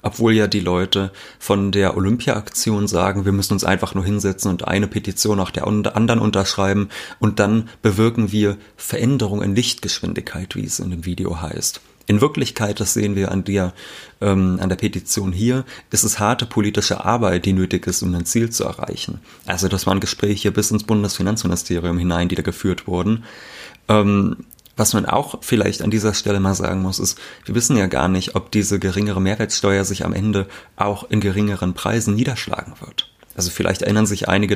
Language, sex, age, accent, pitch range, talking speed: German, male, 30-49, German, 95-105 Hz, 185 wpm